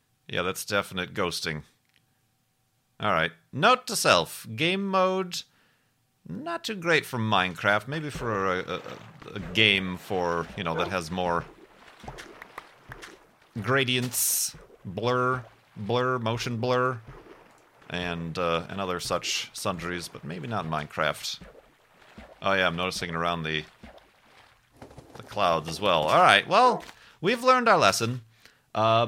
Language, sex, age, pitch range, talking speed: English, male, 40-59, 95-150 Hz, 130 wpm